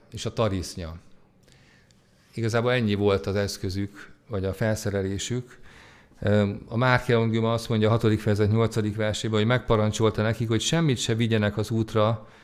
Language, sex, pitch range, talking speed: Hungarian, male, 100-120 Hz, 145 wpm